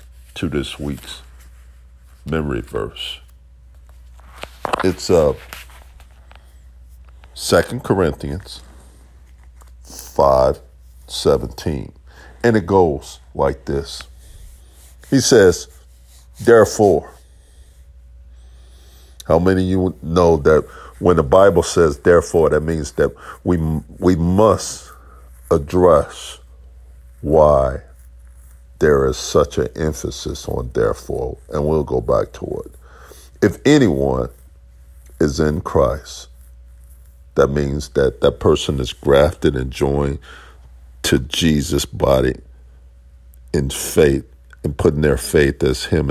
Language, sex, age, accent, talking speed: English, male, 50-69, American, 100 wpm